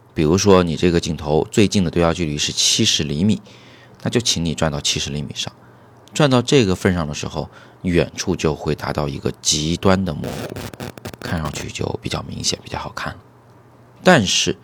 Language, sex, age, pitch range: Chinese, male, 30-49, 85-115 Hz